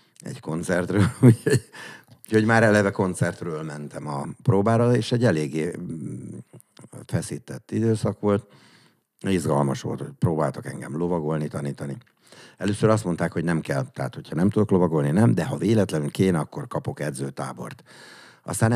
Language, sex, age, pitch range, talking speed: Hungarian, male, 60-79, 75-110 Hz, 135 wpm